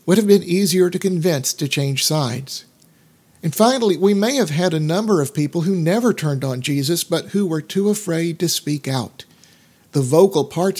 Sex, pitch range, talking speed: male, 145-185 Hz, 195 wpm